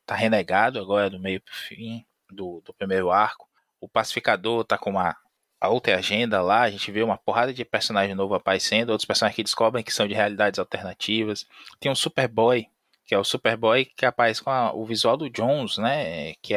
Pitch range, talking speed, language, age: 100-135 Hz, 195 wpm, Portuguese, 20-39